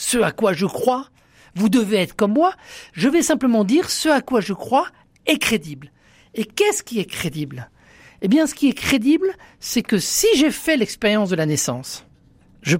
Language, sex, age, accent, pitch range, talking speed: French, male, 50-69, French, 170-255 Hz, 195 wpm